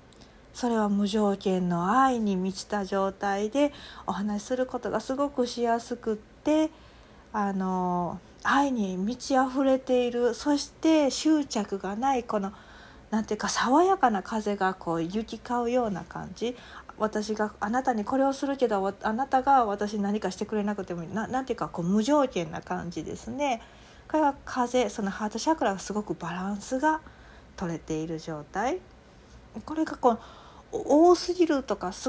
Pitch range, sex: 195-255 Hz, female